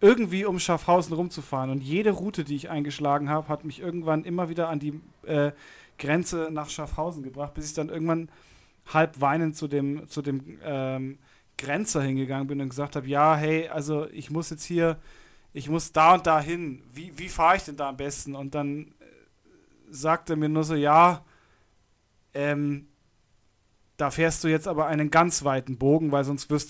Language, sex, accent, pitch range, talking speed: German, male, German, 145-170 Hz, 180 wpm